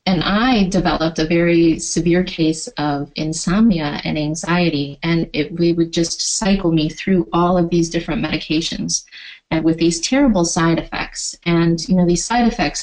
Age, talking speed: 20-39, 170 wpm